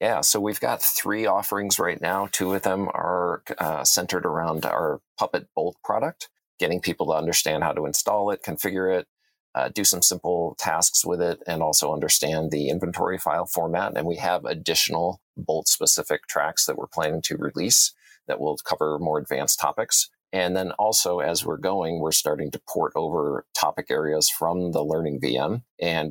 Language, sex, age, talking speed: English, male, 40-59, 180 wpm